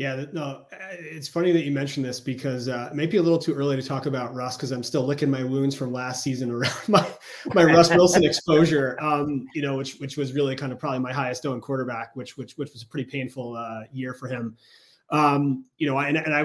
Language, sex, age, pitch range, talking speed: English, male, 30-49, 120-140 Hz, 245 wpm